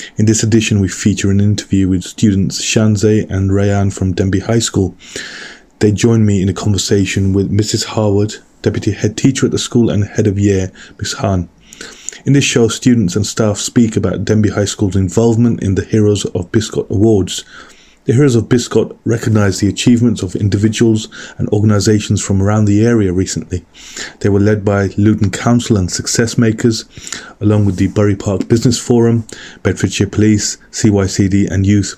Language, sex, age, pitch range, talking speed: English, male, 20-39, 100-115 Hz, 175 wpm